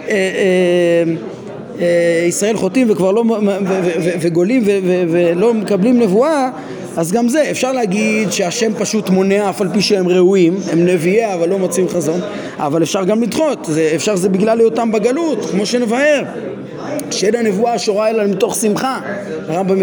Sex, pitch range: male, 185-245 Hz